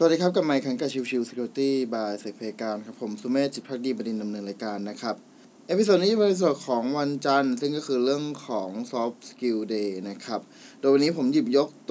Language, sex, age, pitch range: Thai, male, 20-39, 125-170 Hz